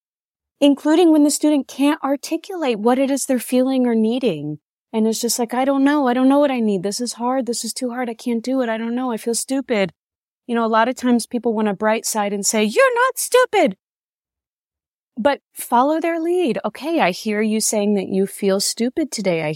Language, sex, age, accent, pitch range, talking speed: English, female, 30-49, American, 175-240 Hz, 225 wpm